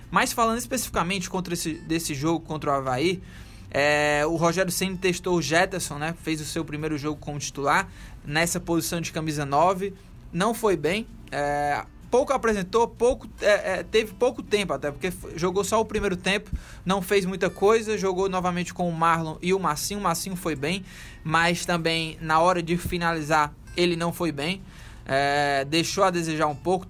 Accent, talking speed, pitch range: Brazilian, 180 wpm, 160-195 Hz